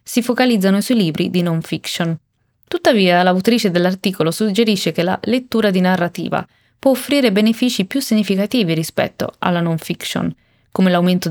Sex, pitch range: female, 180-235 Hz